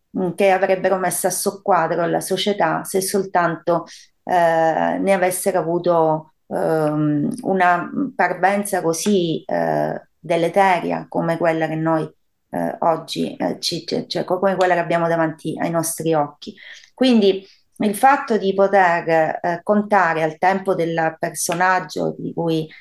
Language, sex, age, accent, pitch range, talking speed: Italian, female, 30-49, native, 165-195 Hz, 130 wpm